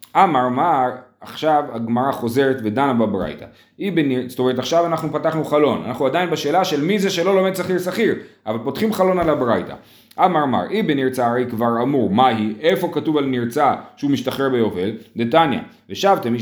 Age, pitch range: 30-49, 120-170 Hz